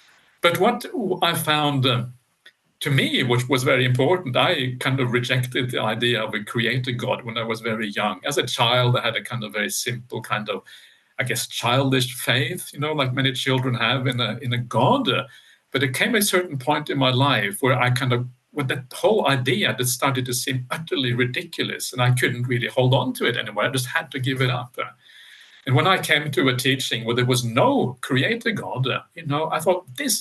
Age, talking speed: 50-69, 220 wpm